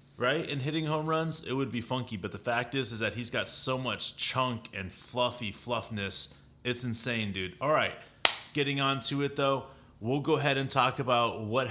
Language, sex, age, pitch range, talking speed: English, male, 30-49, 115-140 Hz, 205 wpm